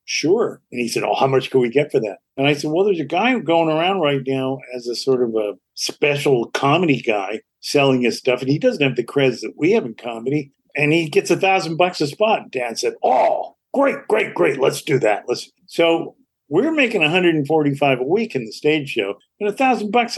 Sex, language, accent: male, English, American